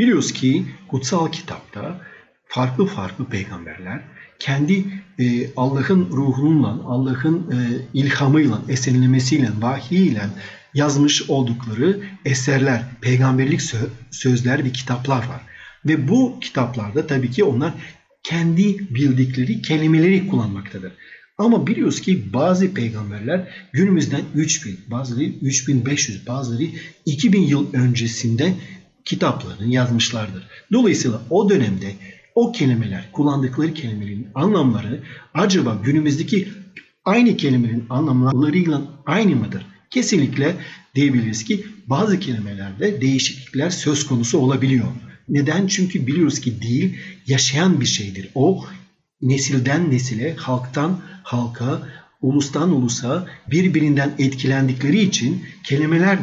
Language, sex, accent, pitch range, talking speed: Turkish, male, native, 125-165 Hz, 100 wpm